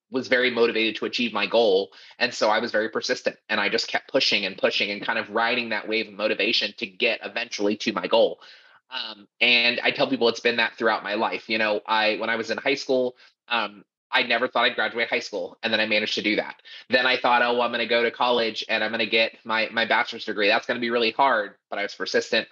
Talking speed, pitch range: 260 wpm, 110-125 Hz